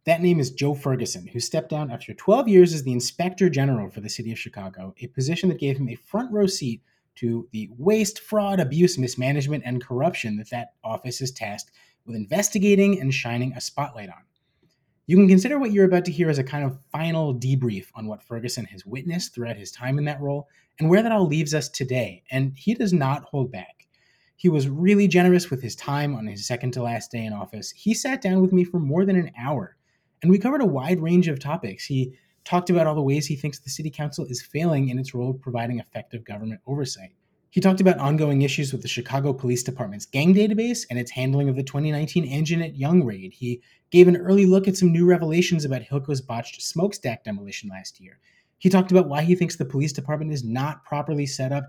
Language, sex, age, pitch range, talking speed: English, male, 30-49, 120-175 Hz, 225 wpm